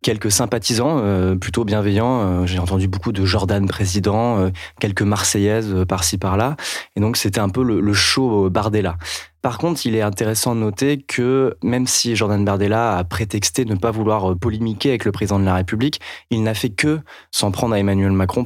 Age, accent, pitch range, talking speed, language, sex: 20-39, French, 95-115 Hz, 180 wpm, French, male